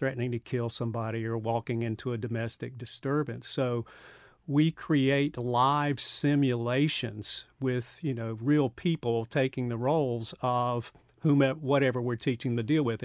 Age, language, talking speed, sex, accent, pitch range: 50-69, English, 145 wpm, male, American, 120-135 Hz